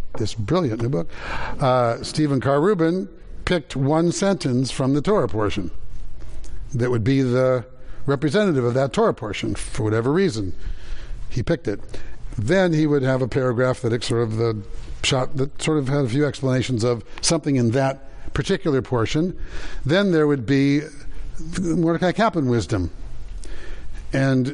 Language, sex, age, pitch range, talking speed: English, male, 60-79, 115-145 Hz, 150 wpm